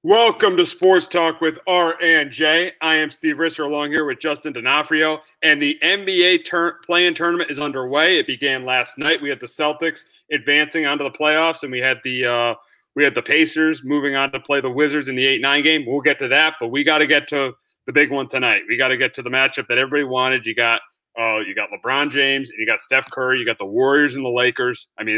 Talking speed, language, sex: 245 wpm, English, male